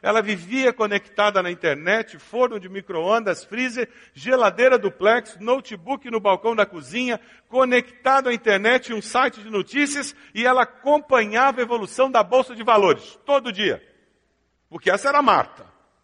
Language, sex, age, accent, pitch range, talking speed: Portuguese, male, 60-79, Brazilian, 200-255 Hz, 140 wpm